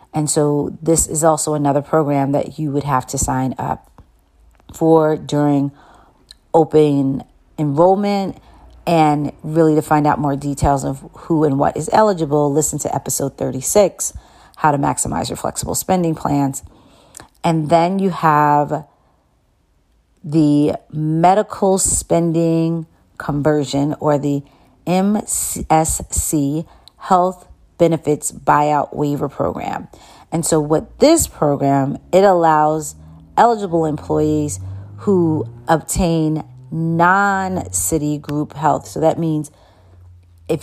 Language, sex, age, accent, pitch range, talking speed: English, female, 40-59, American, 140-165 Hz, 110 wpm